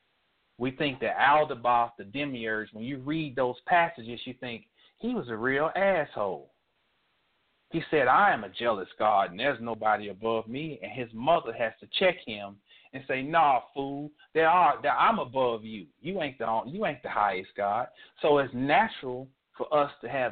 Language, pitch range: English, 115-155 Hz